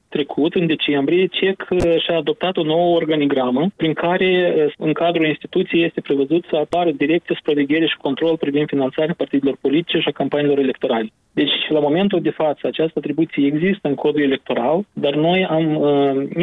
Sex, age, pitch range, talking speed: male, 20-39, 145-170 Hz, 165 wpm